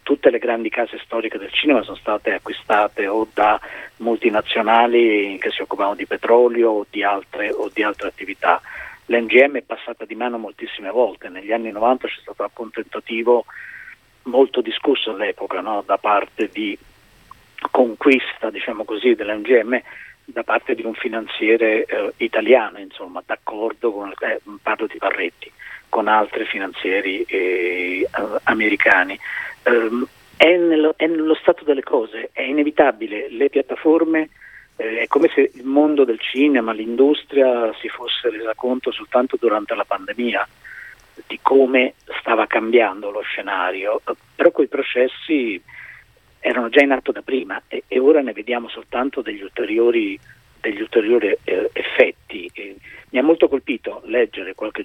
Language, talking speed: Italian, 140 wpm